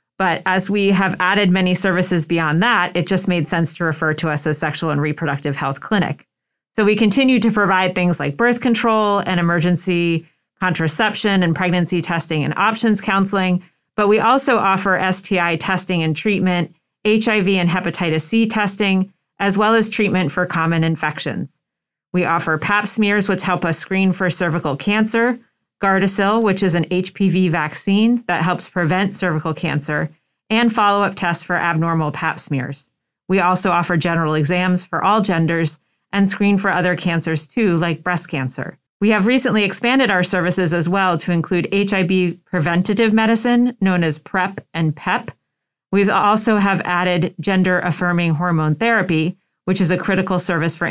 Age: 40-59